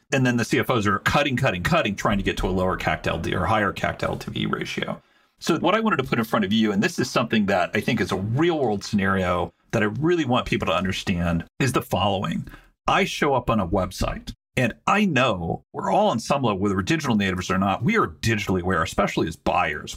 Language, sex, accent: English, male, American